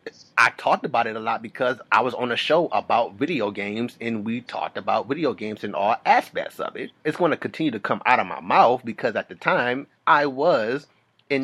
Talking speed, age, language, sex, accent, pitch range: 225 wpm, 30-49, English, male, American, 110-140 Hz